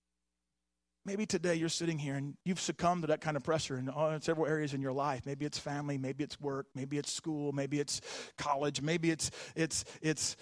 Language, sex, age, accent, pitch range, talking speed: English, male, 40-59, American, 135-175 Hz, 200 wpm